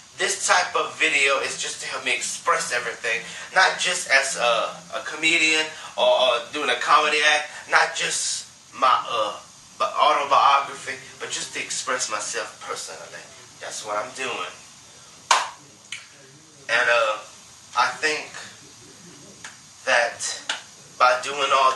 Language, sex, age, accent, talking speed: English, male, 30-49, American, 125 wpm